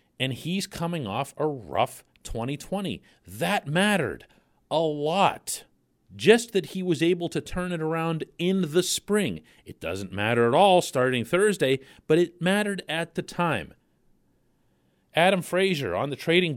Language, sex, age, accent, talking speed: English, male, 40-59, American, 150 wpm